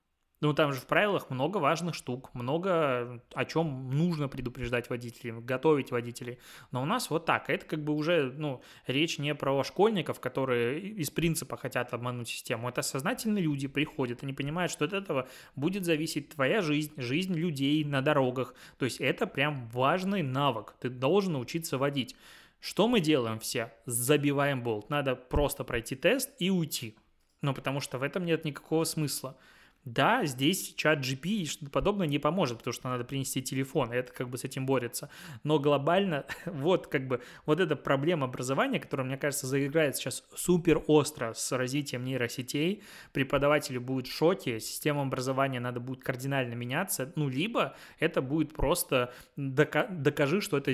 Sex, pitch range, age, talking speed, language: male, 125-155 Hz, 20-39, 170 wpm, Russian